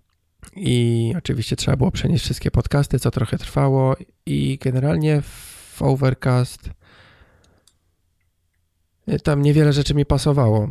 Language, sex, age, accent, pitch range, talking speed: Polish, male, 20-39, native, 115-140 Hz, 105 wpm